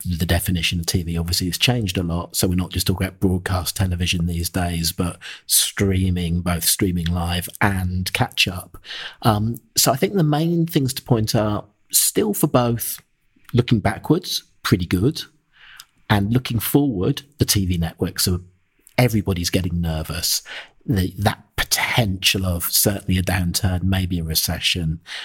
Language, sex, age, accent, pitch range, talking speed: English, male, 40-59, British, 90-110 Hz, 150 wpm